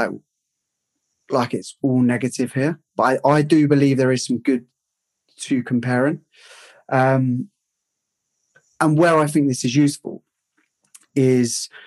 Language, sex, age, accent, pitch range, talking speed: English, male, 20-39, British, 110-140 Hz, 130 wpm